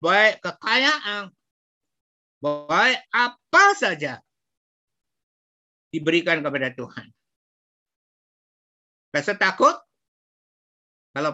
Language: Indonesian